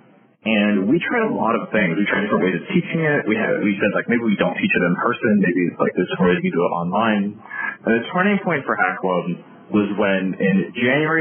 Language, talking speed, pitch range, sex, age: English, 245 wpm, 110-150 Hz, male, 30-49